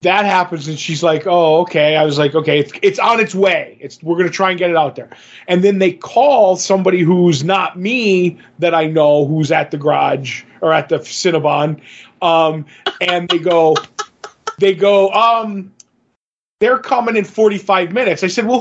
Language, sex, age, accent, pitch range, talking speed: English, male, 30-49, American, 170-220 Hz, 195 wpm